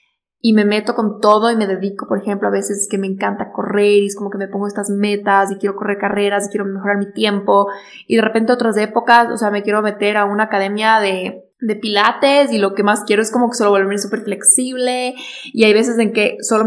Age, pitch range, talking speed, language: 20-39, 200-235 Hz, 245 wpm, Spanish